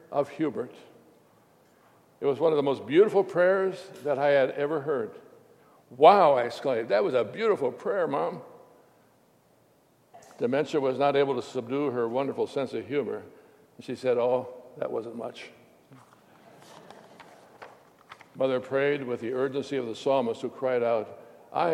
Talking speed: 150 wpm